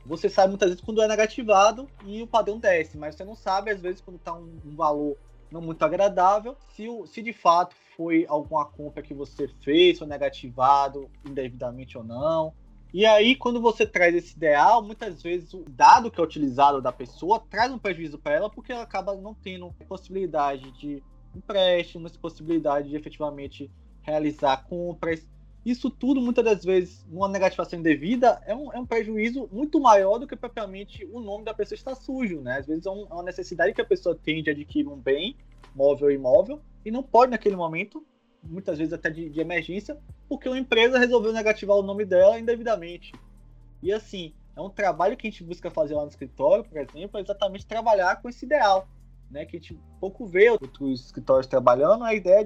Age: 20-39